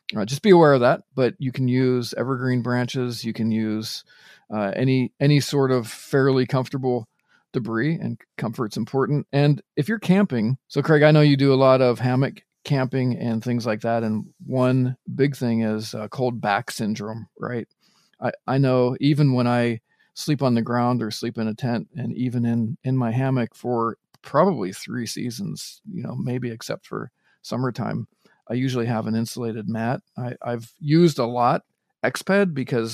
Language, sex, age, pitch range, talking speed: English, male, 40-59, 115-135 Hz, 180 wpm